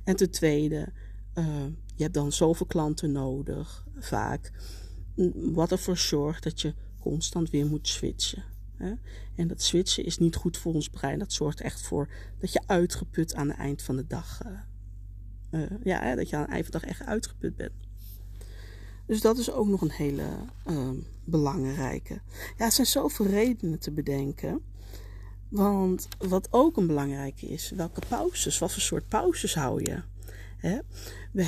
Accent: Dutch